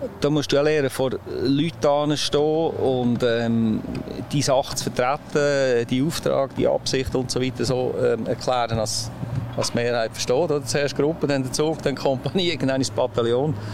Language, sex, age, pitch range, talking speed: German, male, 40-59, 115-135 Hz, 170 wpm